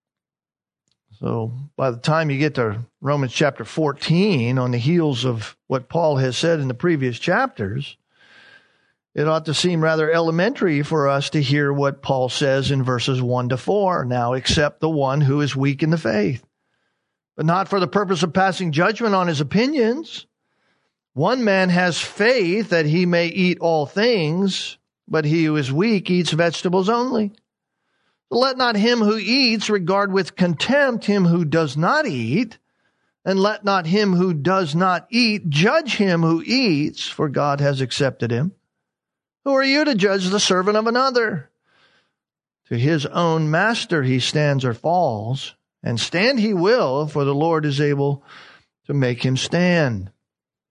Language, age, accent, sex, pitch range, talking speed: English, 40-59, American, male, 140-205 Hz, 165 wpm